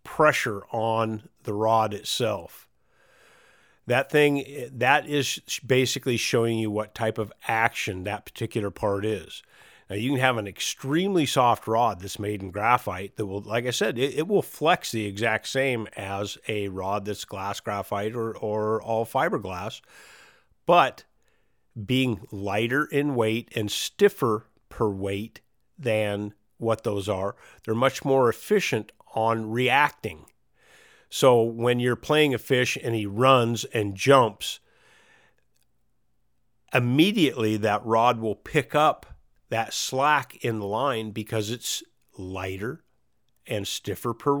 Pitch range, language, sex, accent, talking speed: 105-135 Hz, English, male, American, 135 wpm